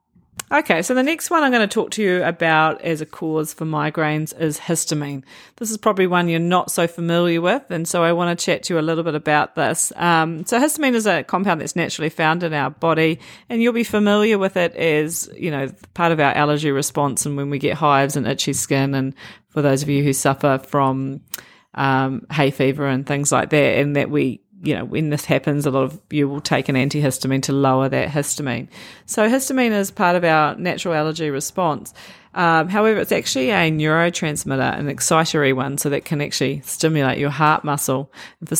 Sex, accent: female, Australian